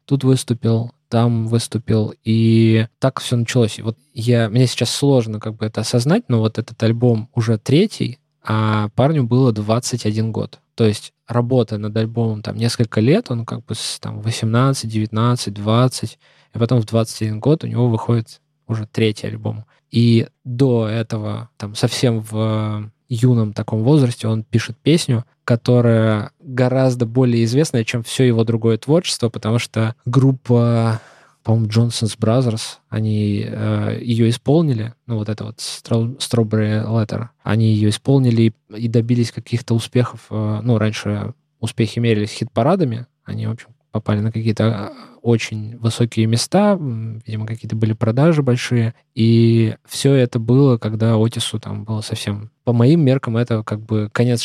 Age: 20-39